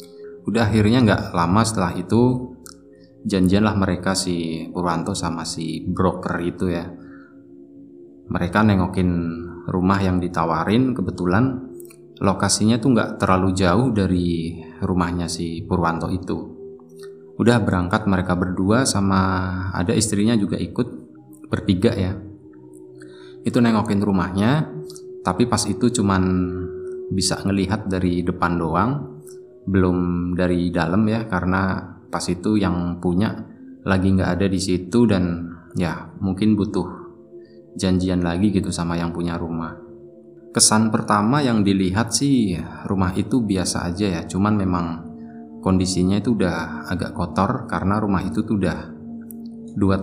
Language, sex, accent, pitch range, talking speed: Indonesian, male, native, 85-110 Hz, 120 wpm